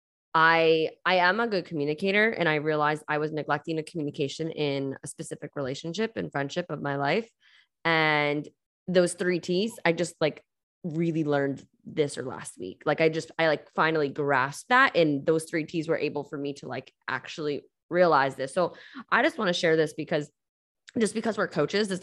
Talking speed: 190 wpm